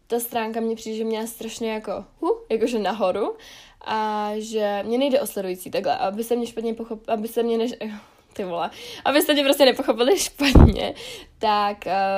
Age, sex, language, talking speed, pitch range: 10-29, female, Czech, 175 wpm, 200-225 Hz